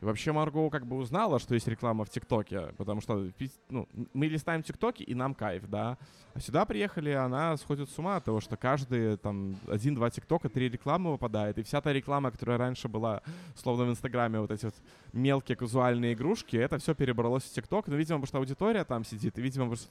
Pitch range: 110-140 Hz